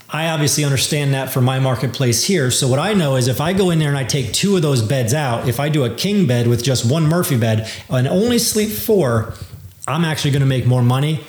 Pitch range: 120-155 Hz